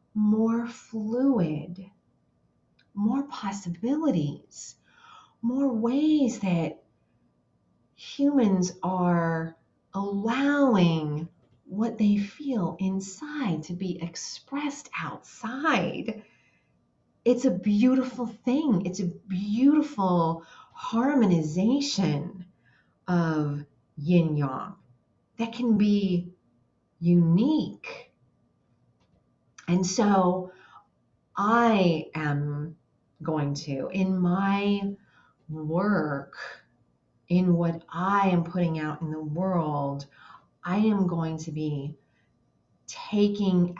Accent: American